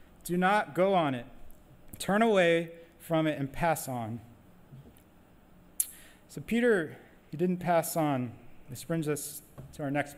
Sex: male